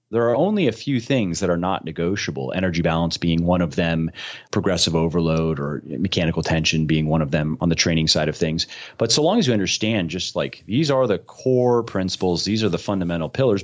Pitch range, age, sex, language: 80-105 Hz, 30-49, male, English